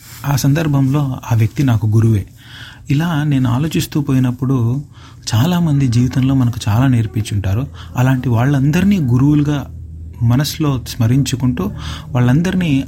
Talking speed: 100 wpm